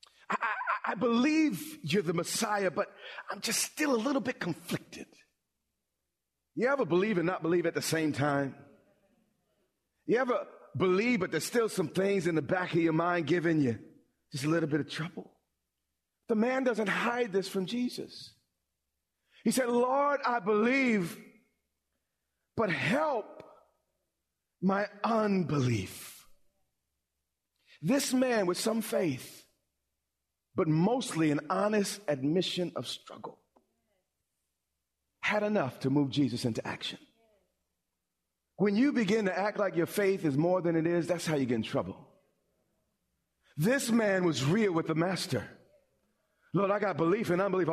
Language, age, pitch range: English, 40-59, 140-210 Hz